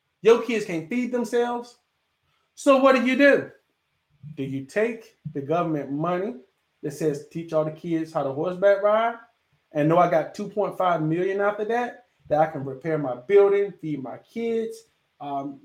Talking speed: 175 wpm